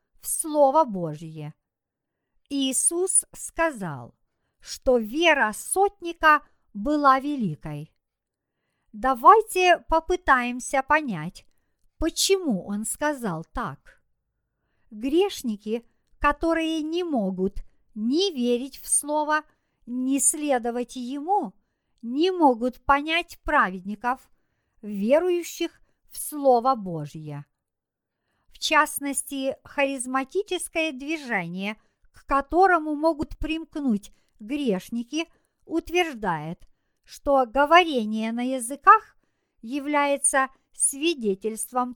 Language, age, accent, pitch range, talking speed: Russian, 50-69, native, 230-320 Hz, 75 wpm